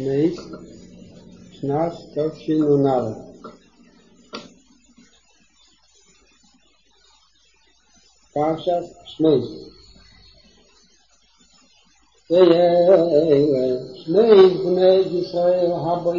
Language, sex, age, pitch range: English, male, 60-79, 145-180 Hz